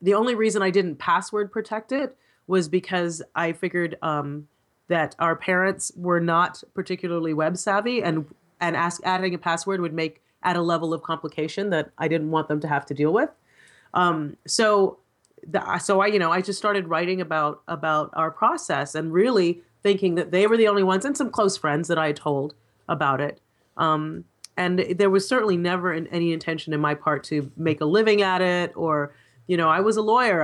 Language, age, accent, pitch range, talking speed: English, 30-49, American, 160-190 Hz, 200 wpm